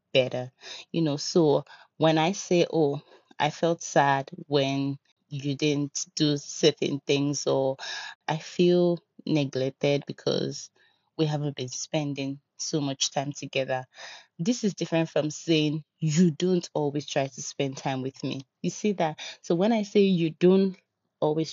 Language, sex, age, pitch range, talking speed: English, female, 30-49, 140-175 Hz, 150 wpm